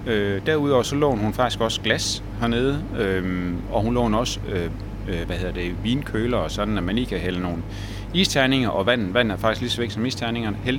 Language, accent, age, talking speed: Danish, native, 30-49, 210 wpm